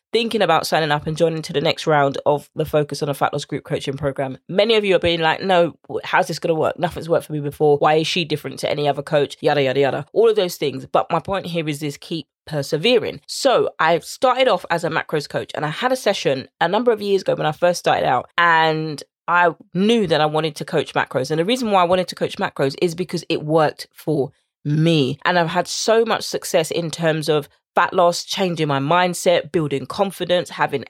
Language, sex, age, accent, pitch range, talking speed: English, female, 20-39, British, 155-190 Hz, 240 wpm